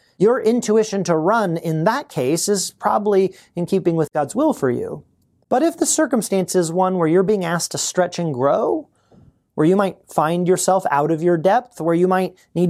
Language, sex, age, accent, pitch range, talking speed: English, male, 30-49, American, 145-195 Hz, 205 wpm